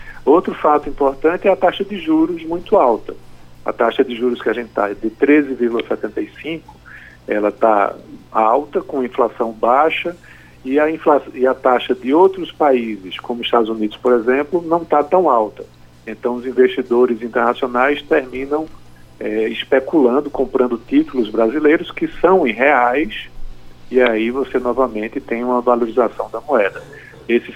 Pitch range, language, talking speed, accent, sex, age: 115-150 Hz, Portuguese, 150 wpm, Brazilian, male, 50-69